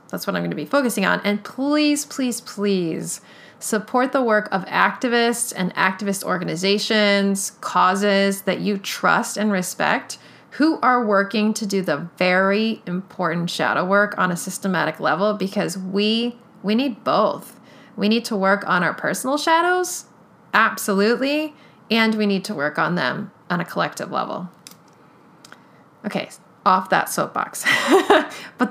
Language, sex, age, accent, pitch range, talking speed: English, female, 30-49, American, 190-240 Hz, 145 wpm